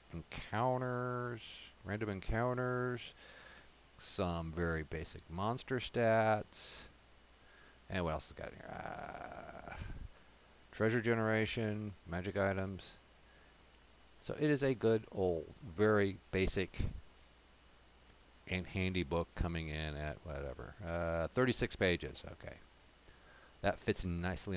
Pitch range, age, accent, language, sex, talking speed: 80-110 Hz, 50-69, American, English, male, 105 wpm